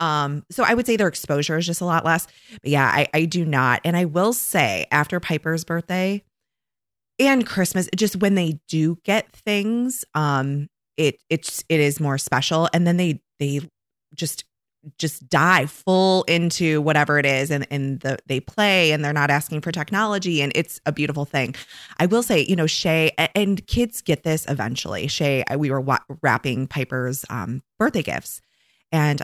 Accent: American